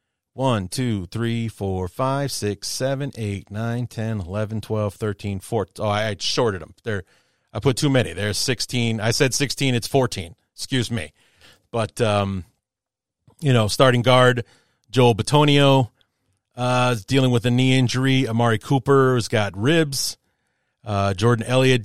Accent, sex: American, male